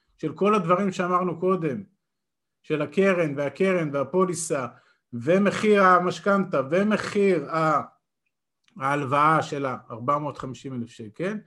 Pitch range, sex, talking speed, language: 145-200 Hz, male, 85 wpm, Hebrew